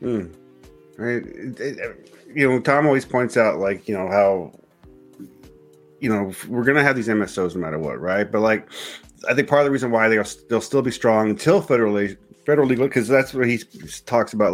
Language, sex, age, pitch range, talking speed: English, male, 40-59, 100-125 Hz, 200 wpm